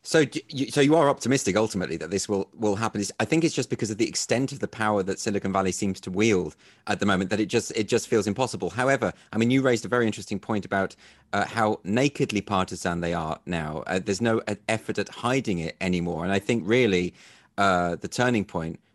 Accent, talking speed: British, 230 wpm